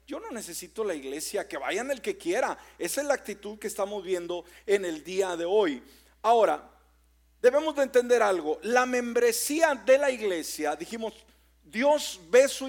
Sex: male